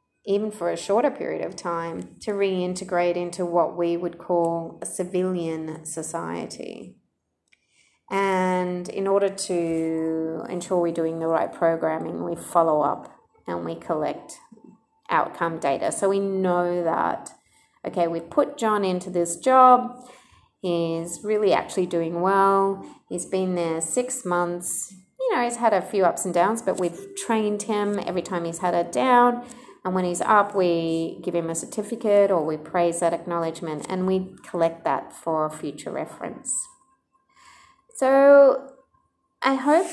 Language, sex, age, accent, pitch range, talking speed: English, female, 30-49, Australian, 170-235 Hz, 150 wpm